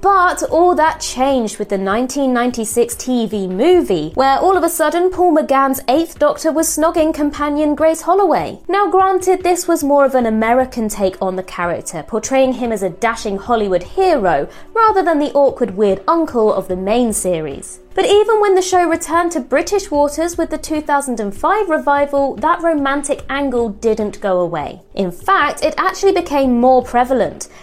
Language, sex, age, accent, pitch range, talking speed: English, female, 20-39, British, 225-330 Hz, 170 wpm